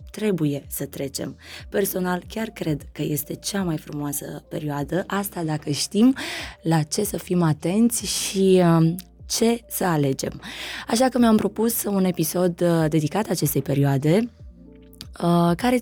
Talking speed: 130 wpm